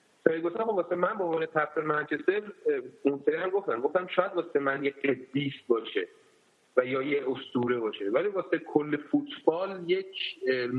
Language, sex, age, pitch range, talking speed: Persian, male, 30-49, 135-175 Hz, 155 wpm